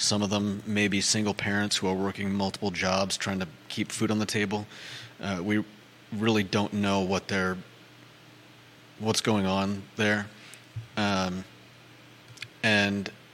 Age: 30-49